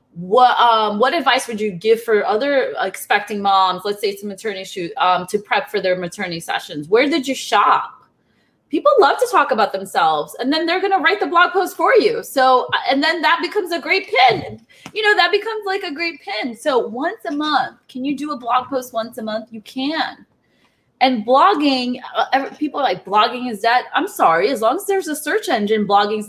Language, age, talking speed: English, 20-39, 210 wpm